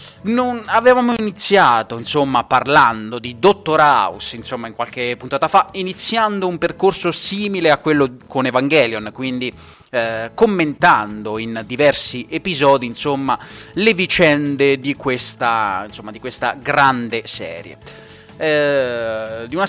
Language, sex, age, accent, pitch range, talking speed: Italian, male, 30-49, native, 120-155 Hz, 120 wpm